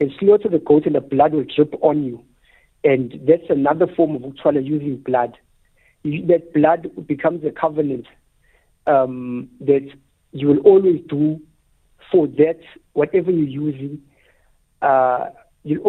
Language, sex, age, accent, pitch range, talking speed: English, male, 60-79, South African, 135-175 Hz, 135 wpm